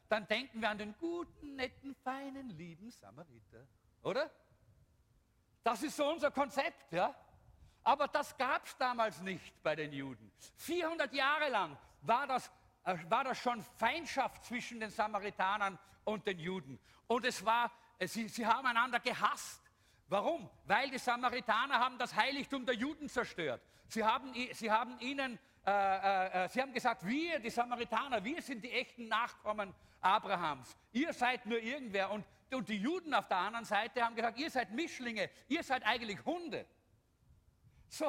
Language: English